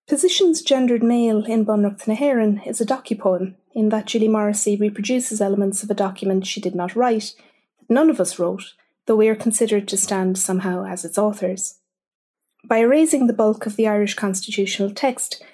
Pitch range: 200-245 Hz